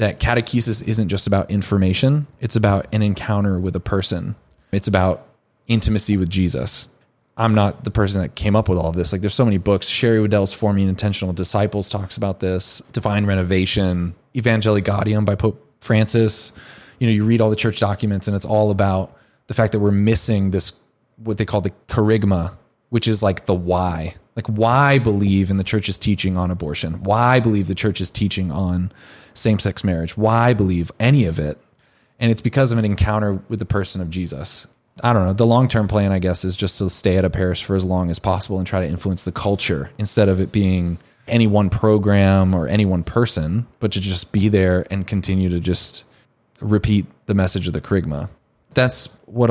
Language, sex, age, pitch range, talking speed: English, male, 20-39, 95-110 Hz, 200 wpm